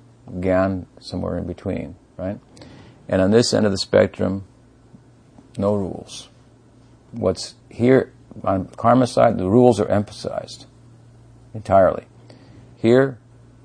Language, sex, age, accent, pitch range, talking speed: English, male, 50-69, American, 95-120 Hz, 110 wpm